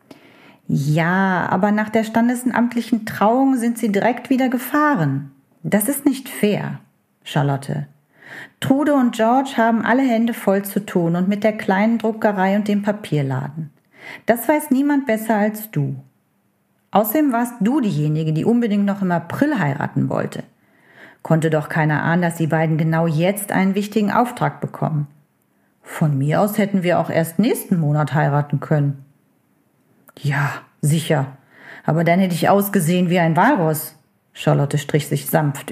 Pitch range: 155-220 Hz